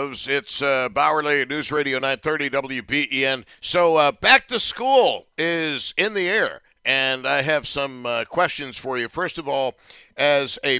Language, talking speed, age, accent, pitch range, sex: English, 160 wpm, 60-79, American, 115-145 Hz, male